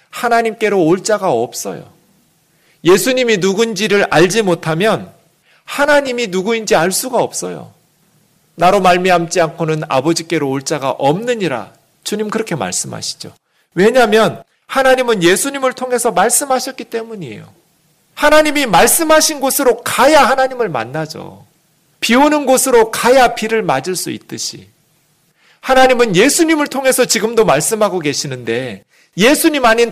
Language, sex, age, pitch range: Korean, male, 40-59, 160-245 Hz